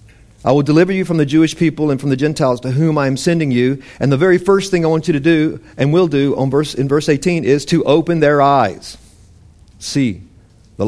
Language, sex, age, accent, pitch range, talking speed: English, male, 50-69, American, 110-145 Hz, 235 wpm